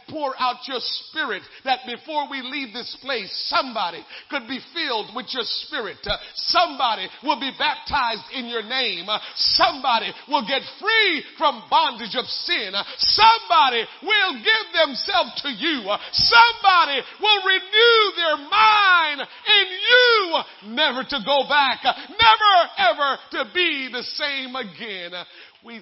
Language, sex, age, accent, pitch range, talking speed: English, male, 50-69, American, 205-320 Hz, 130 wpm